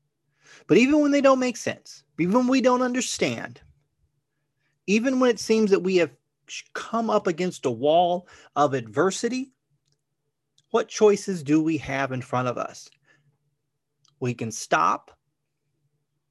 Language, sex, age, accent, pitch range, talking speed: English, male, 30-49, American, 145-200 Hz, 140 wpm